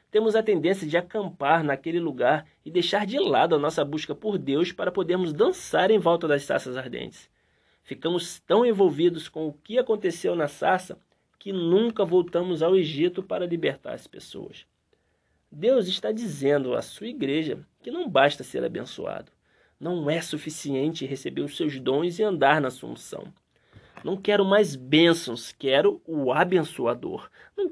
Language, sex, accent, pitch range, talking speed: Portuguese, male, Brazilian, 145-200 Hz, 155 wpm